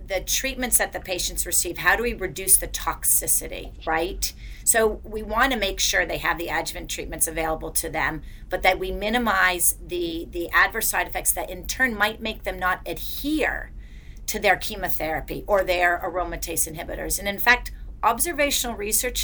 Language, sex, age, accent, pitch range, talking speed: English, female, 40-59, American, 180-245 Hz, 175 wpm